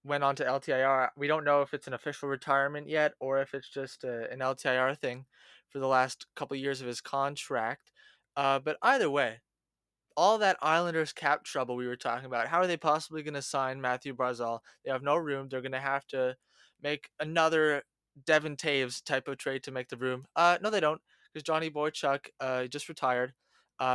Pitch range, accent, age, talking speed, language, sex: 130-150 Hz, American, 20-39, 210 wpm, English, male